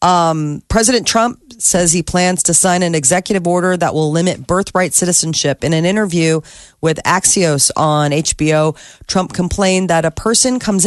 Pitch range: 150-185 Hz